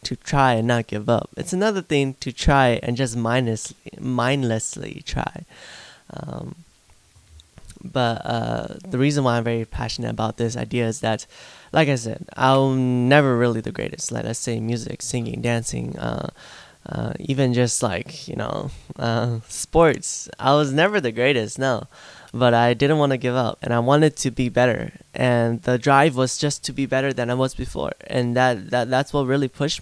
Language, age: English, 10-29